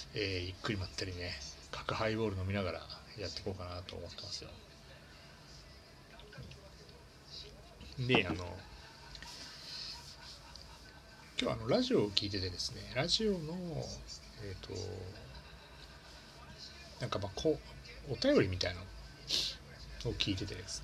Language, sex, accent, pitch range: Japanese, male, native, 75-105 Hz